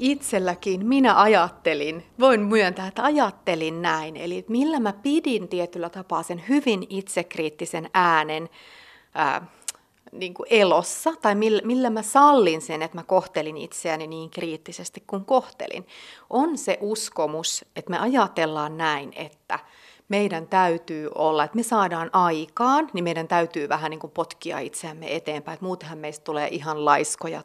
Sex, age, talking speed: female, 30-49, 145 wpm